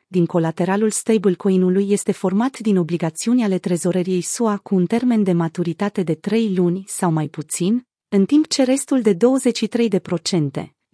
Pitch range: 175-225 Hz